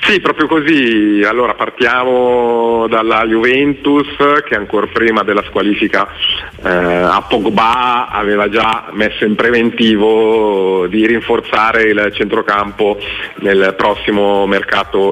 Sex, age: male, 40-59